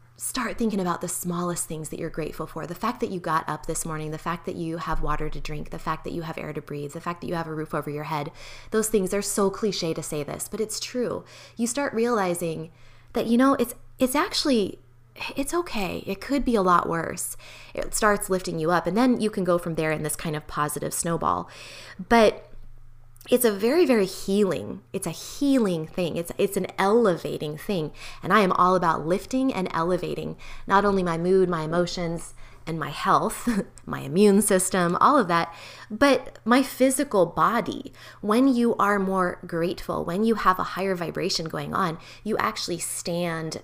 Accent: American